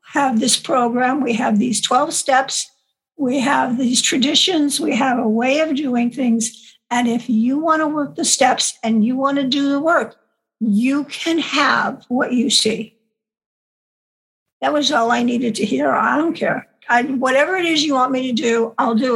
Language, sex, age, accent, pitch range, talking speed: English, female, 60-79, American, 230-270 Hz, 190 wpm